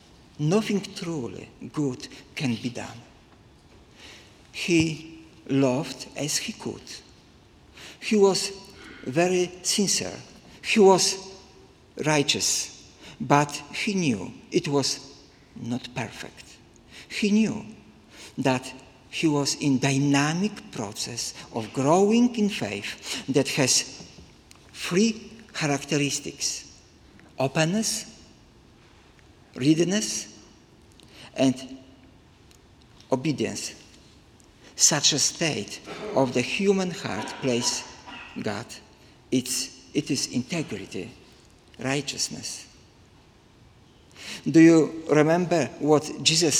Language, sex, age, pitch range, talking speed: English, male, 50-69, 130-185 Hz, 80 wpm